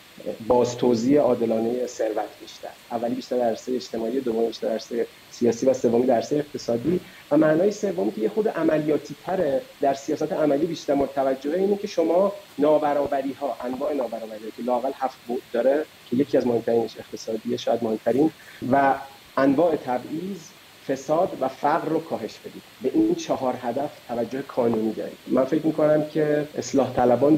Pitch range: 115-150 Hz